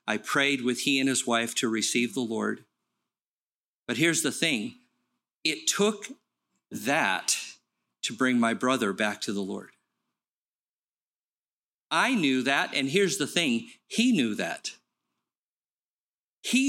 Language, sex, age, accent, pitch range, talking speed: English, male, 50-69, American, 130-175 Hz, 135 wpm